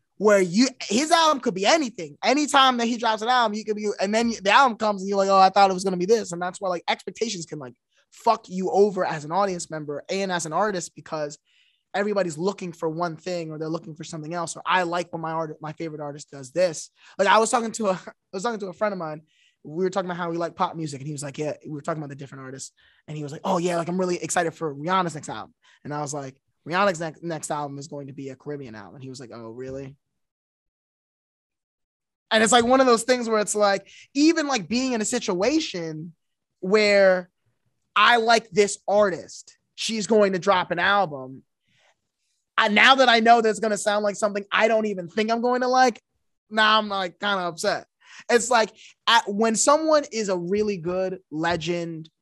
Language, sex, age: English, male, 20-39